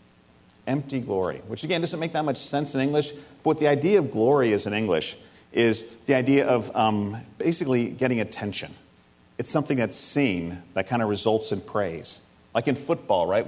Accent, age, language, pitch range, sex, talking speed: American, 40-59, English, 110-150 Hz, male, 185 wpm